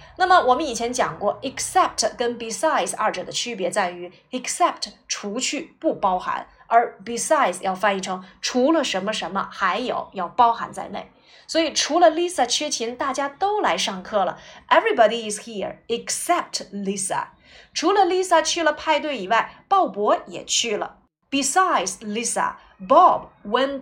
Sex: female